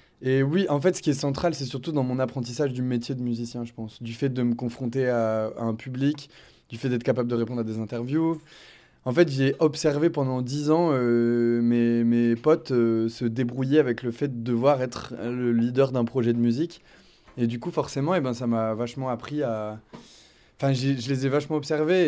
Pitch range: 120-145 Hz